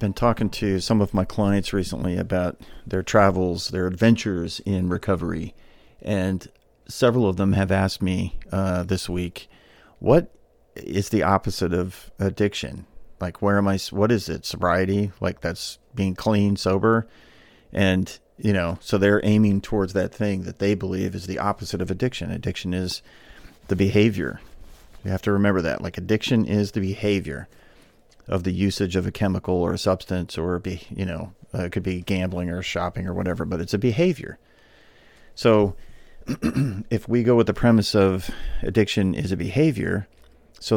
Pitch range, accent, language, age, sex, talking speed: 90-105 Hz, American, English, 40-59, male, 170 wpm